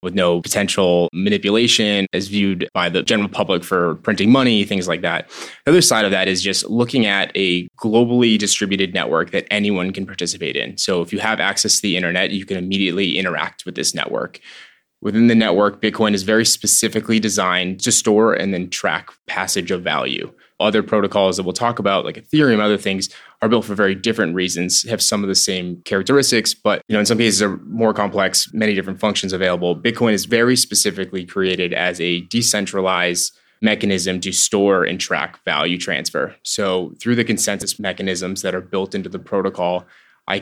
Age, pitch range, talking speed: 20-39, 95-110 Hz, 190 wpm